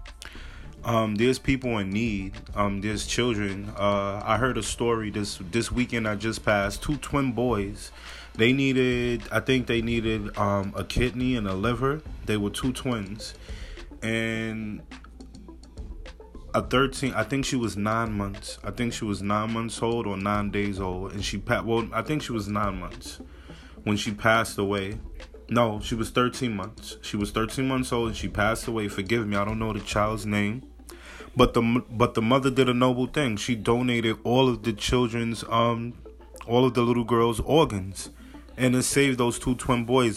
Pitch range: 105-125 Hz